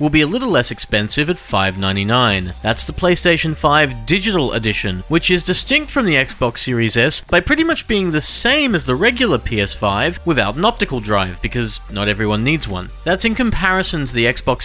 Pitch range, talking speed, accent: 120-185 Hz, 195 wpm, Australian